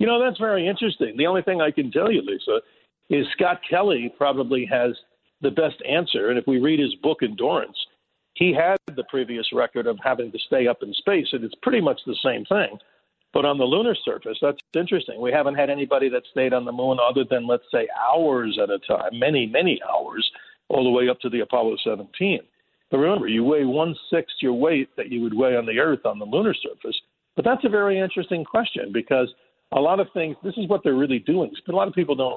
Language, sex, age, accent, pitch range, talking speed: English, male, 50-69, American, 125-195 Hz, 230 wpm